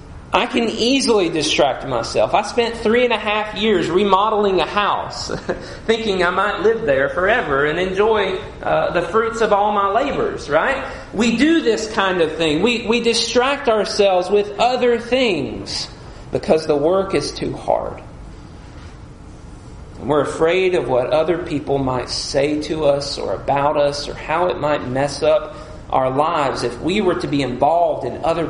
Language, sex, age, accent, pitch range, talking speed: English, male, 40-59, American, 130-205 Hz, 170 wpm